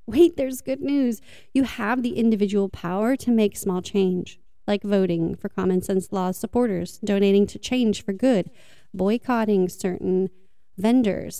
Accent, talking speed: American, 145 wpm